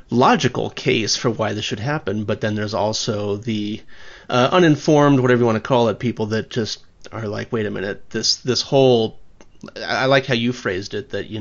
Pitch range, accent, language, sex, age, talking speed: 105-125 Hz, American, English, male, 30-49, 205 wpm